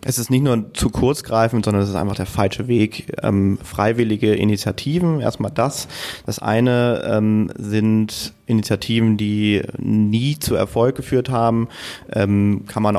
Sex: male